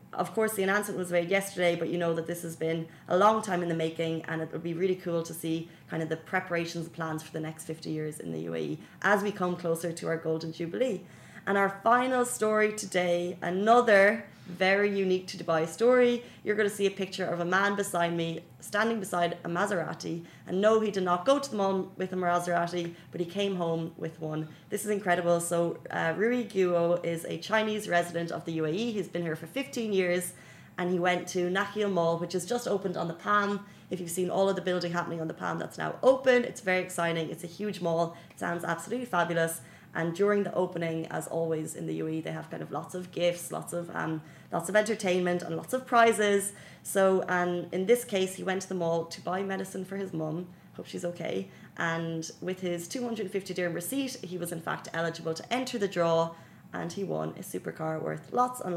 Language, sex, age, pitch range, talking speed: Arabic, female, 20-39, 165-200 Hz, 225 wpm